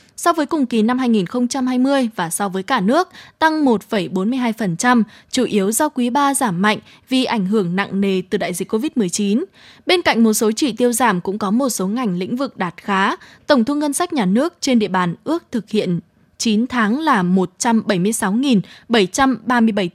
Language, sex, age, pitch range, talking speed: Vietnamese, female, 20-39, 205-265 Hz, 185 wpm